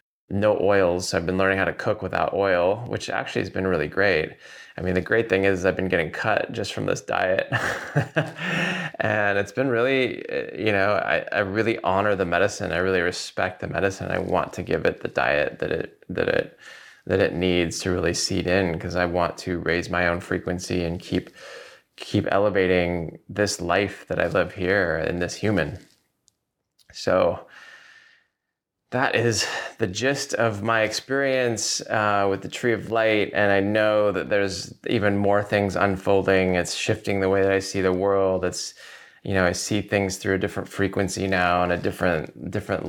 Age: 20-39